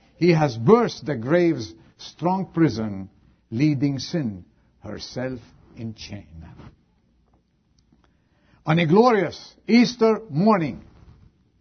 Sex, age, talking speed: male, 60-79, 90 wpm